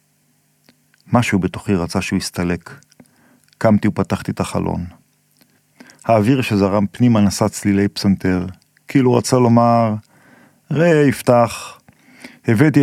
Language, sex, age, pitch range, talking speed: Hebrew, male, 40-59, 100-125 Hz, 100 wpm